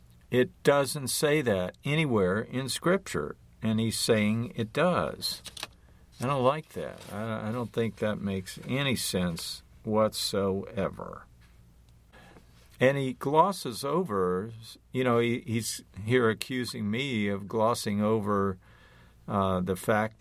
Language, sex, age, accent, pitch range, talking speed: English, male, 50-69, American, 95-120 Hz, 120 wpm